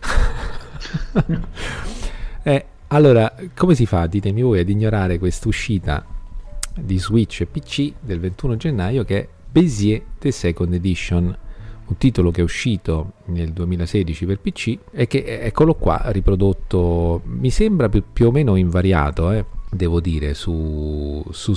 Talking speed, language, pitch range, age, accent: 140 wpm, Italian, 85-110 Hz, 40-59, native